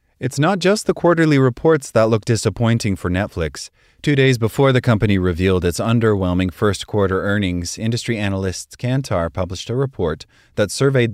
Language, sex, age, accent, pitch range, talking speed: English, male, 30-49, American, 90-120 Hz, 155 wpm